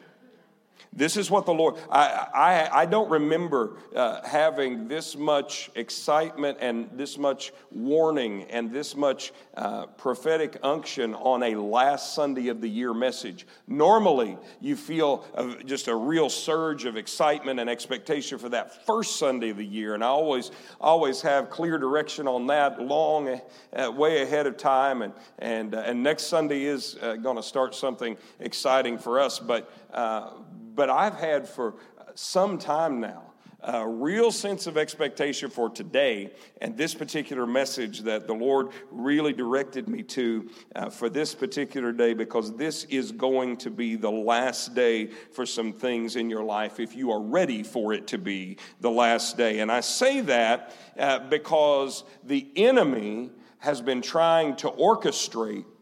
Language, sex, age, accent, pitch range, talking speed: English, male, 40-59, American, 115-155 Hz, 165 wpm